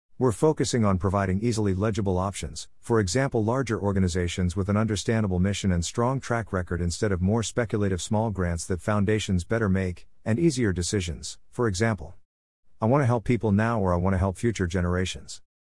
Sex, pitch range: male, 90-115 Hz